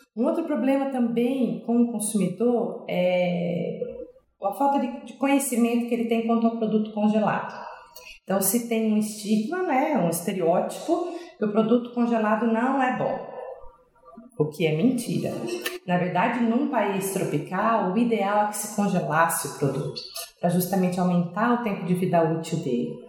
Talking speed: 160 wpm